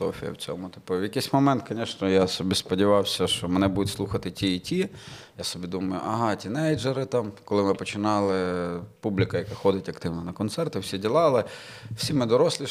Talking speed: 175 wpm